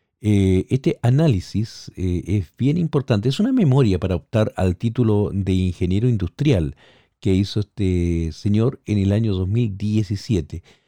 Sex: male